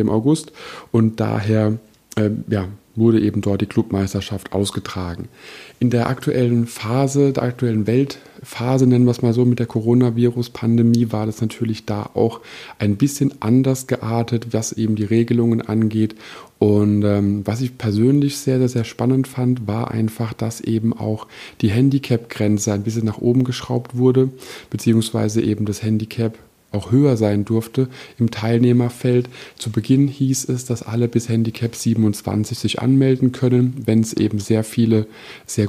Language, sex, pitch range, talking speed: German, male, 110-125 Hz, 150 wpm